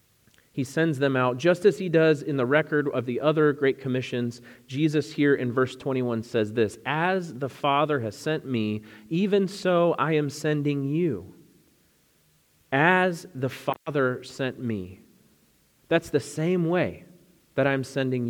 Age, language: 30-49, English